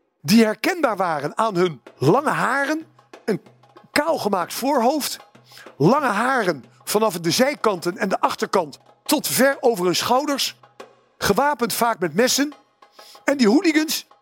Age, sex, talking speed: 50-69, male, 130 wpm